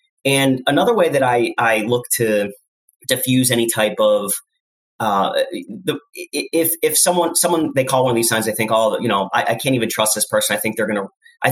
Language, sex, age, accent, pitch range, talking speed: English, male, 30-49, American, 110-150 Hz, 215 wpm